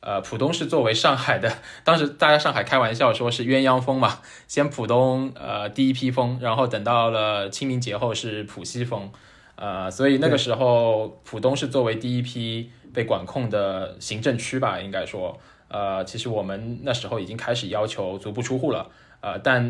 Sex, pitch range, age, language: male, 110-130 Hz, 20-39, Chinese